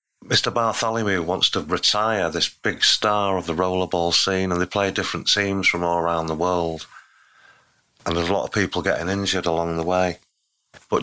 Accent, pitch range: British, 85-100 Hz